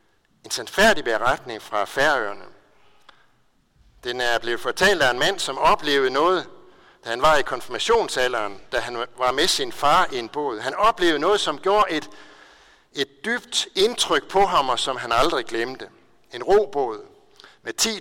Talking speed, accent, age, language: 160 wpm, native, 60-79, Danish